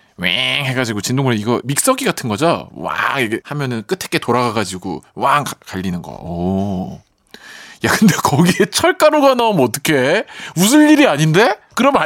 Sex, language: male, Korean